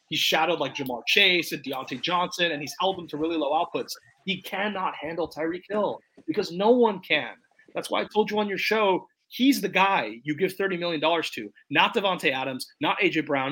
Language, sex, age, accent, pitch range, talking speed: English, male, 30-49, American, 155-205 Hz, 210 wpm